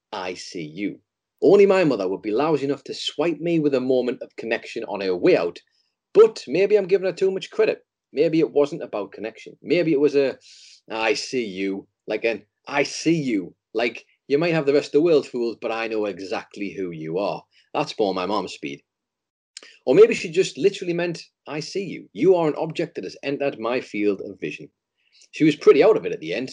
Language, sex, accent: English, male, British